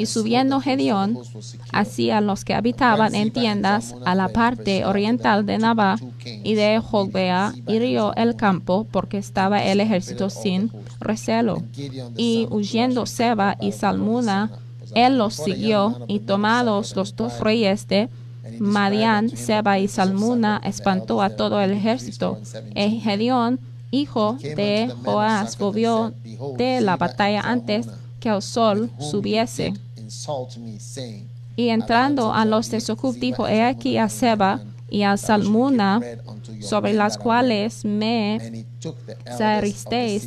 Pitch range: 180-225 Hz